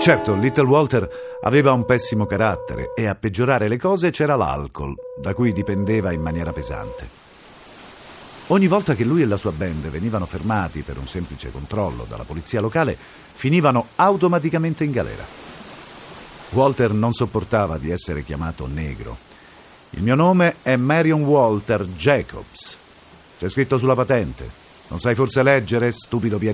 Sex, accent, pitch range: male, native, 95-135 Hz